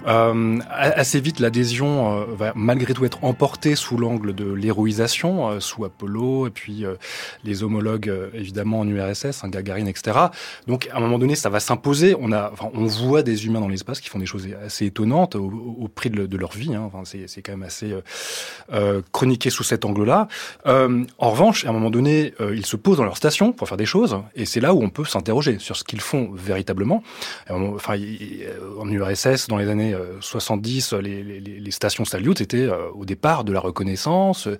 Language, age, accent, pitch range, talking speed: French, 20-39, French, 105-130 Hz, 205 wpm